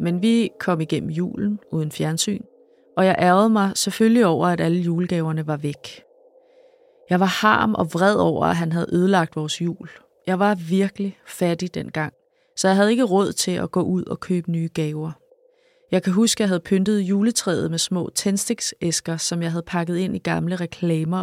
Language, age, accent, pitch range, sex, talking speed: Danish, 20-39, native, 170-215 Hz, female, 190 wpm